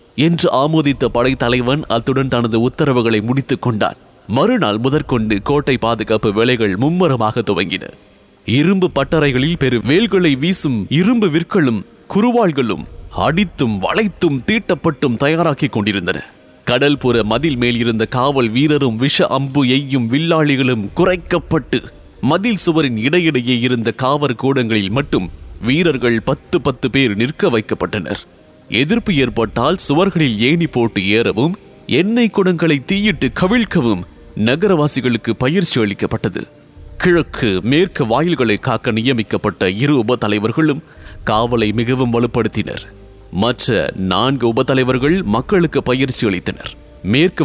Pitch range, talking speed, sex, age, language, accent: 115-160 Hz, 90 wpm, male, 30-49, English, Indian